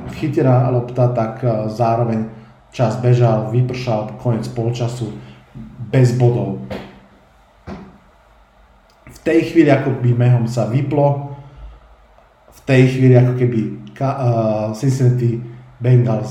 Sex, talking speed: male, 105 wpm